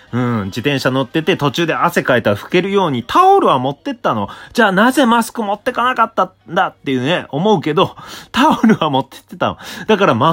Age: 30-49